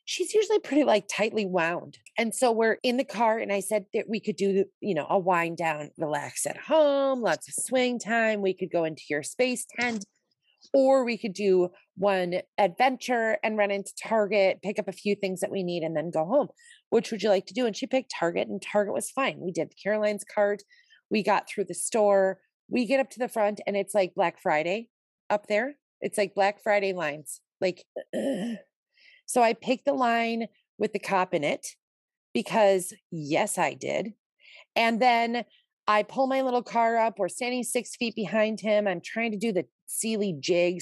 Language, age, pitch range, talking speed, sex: English, 30-49, 190-240 Hz, 205 wpm, female